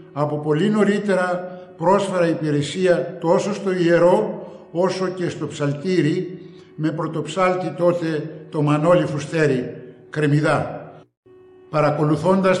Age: 60-79